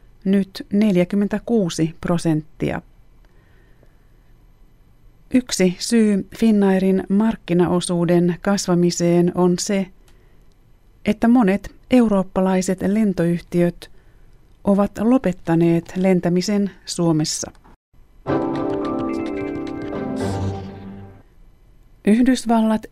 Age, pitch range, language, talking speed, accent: 30-49, 170-205 Hz, Finnish, 50 wpm, native